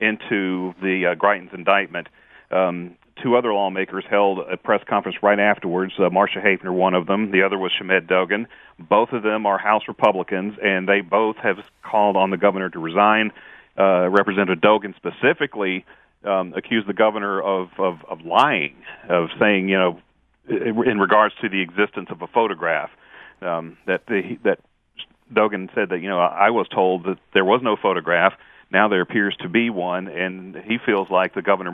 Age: 40-59